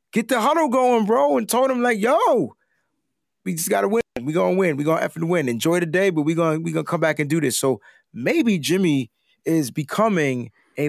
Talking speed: 235 wpm